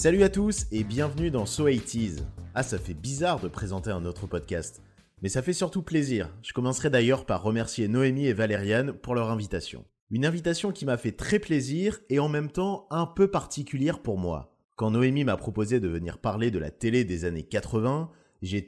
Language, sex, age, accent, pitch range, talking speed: French, male, 30-49, French, 95-135 Hz, 200 wpm